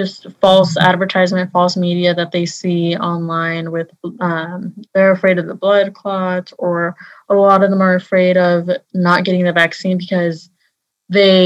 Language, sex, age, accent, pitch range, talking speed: English, female, 20-39, American, 175-195 Hz, 160 wpm